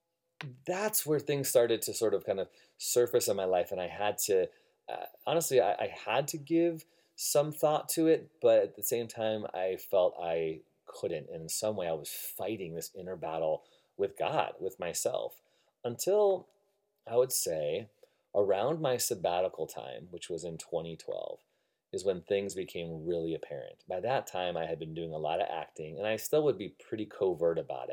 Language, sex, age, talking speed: English, male, 30-49, 185 wpm